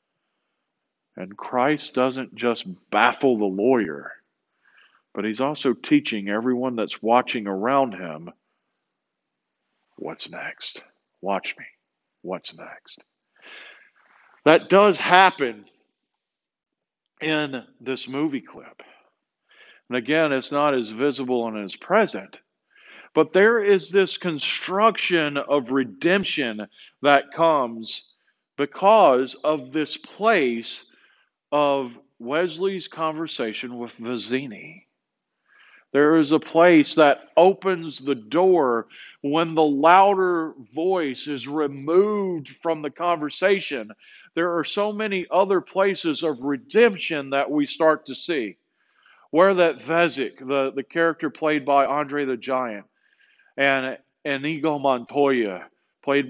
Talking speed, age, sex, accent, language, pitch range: 110 wpm, 50-69, male, American, English, 130-175 Hz